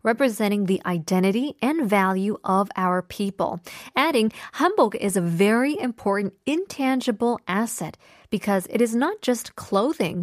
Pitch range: 180-245 Hz